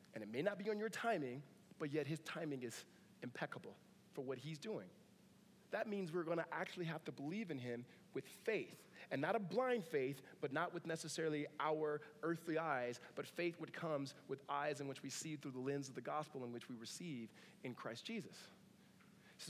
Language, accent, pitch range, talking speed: English, American, 155-195 Hz, 205 wpm